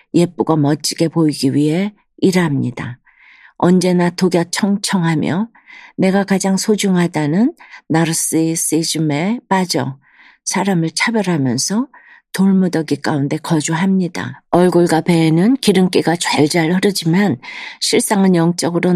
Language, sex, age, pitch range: Korean, female, 50-69, 155-190 Hz